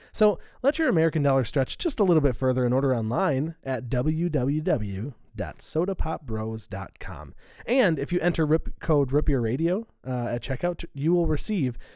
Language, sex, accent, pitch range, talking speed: English, male, American, 120-175 Hz, 145 wpm